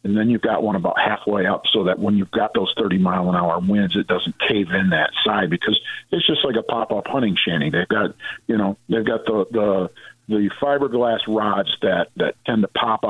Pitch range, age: 100-120 Hz, 50-69